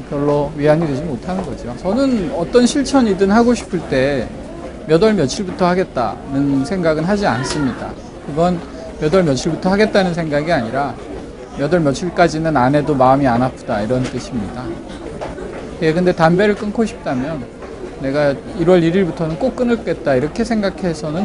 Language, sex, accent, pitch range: Korean, male, native, 150-210 Hz